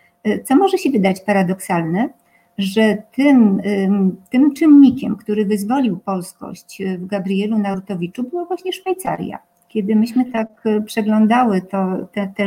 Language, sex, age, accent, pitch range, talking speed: Polish, female, 50-69, native, 195-255 Hz, 120 wpm